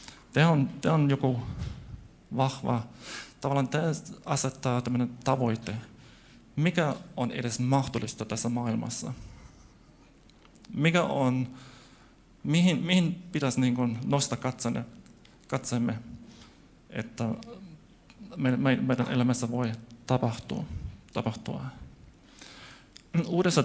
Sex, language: male, Finnish